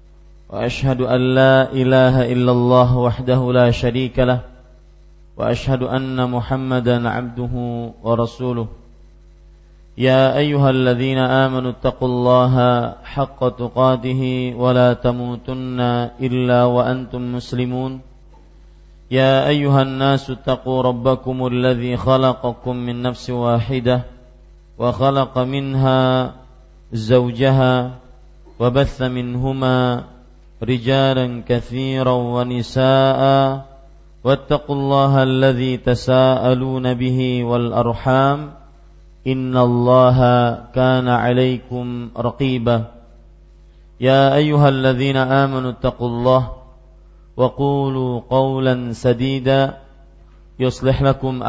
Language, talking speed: Malay, 80 wpm